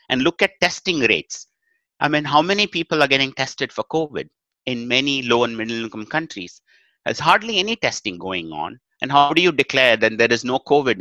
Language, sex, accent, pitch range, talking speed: English, male, Indian, 100-150 Hz, 205 wpm